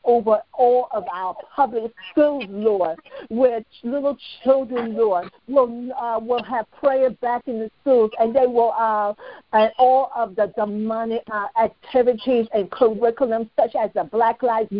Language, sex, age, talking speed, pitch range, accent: English, female, 50-69, 155 wpm, 220-255 Hz, American